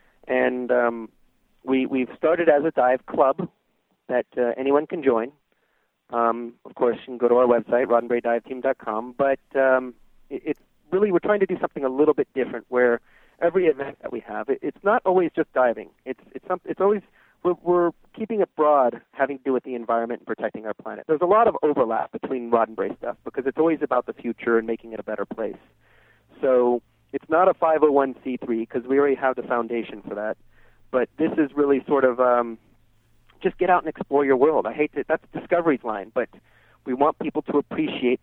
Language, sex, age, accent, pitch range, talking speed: English, male, 40-59, American, 120-160 Hz, 200 wpm